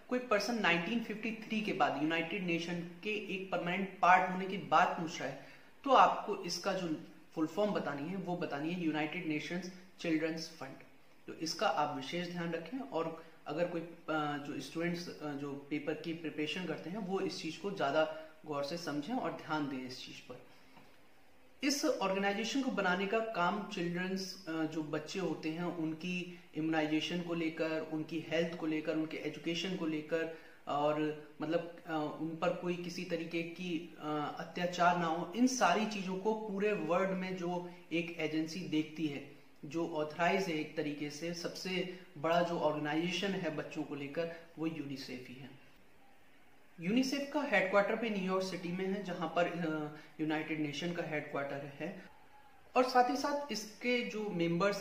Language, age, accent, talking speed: Hindi, 30-49, native, 160 wpm